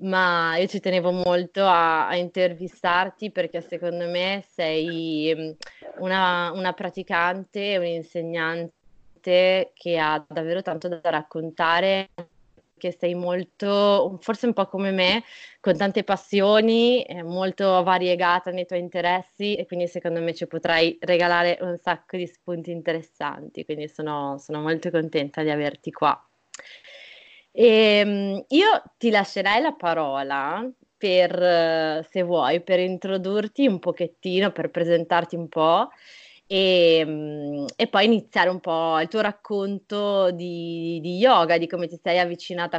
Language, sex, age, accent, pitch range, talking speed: Italian, female, 20-39, native, 170-195 Hz, 130 wpm